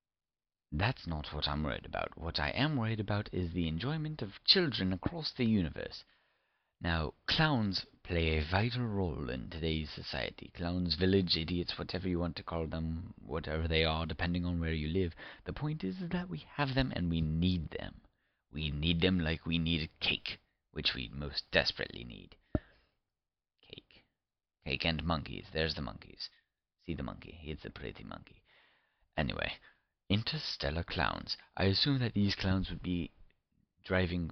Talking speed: 165 wpm